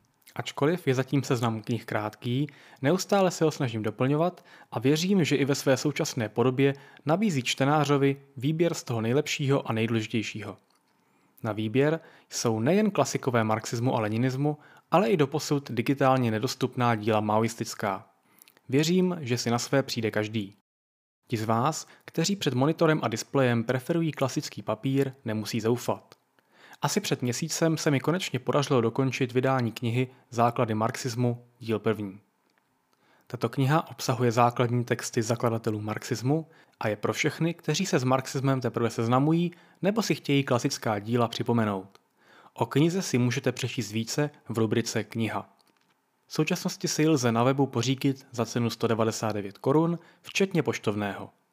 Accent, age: native, 20-39